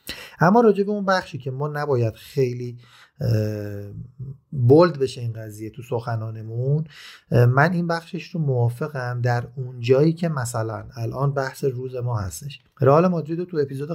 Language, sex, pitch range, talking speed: Persian, male, 120-155 Hz, 140 wpm